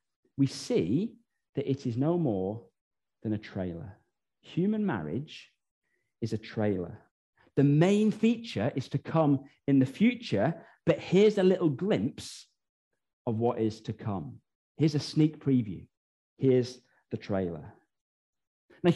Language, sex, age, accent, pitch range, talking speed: English, male, 40-59, British, 125-190 Hz, 135 wpm